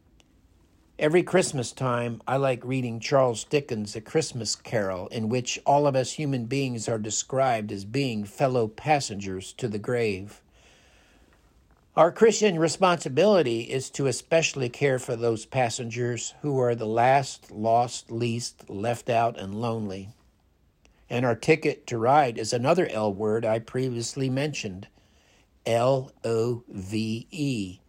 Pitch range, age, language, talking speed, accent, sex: 105-140 Hz, 50-69, English, 130 wpm, American, male